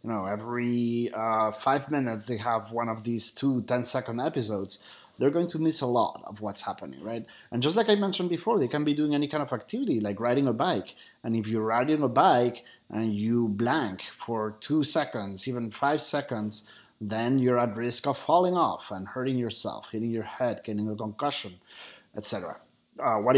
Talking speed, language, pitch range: 190 wpm, English, 110-145 Hz